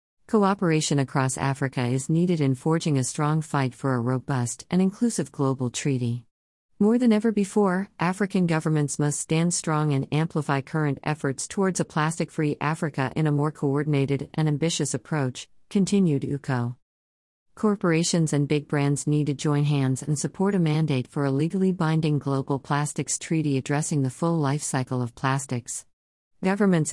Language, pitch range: English, 130-160 Hz